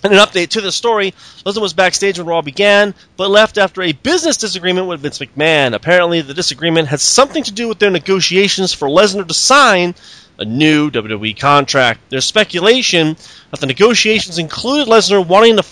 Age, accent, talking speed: 30-49, American, 185 wpm